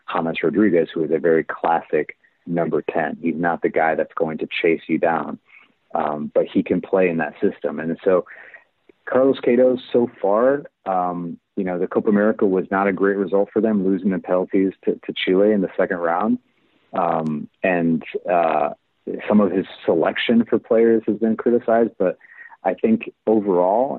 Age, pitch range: 30-49, 90-110 Hz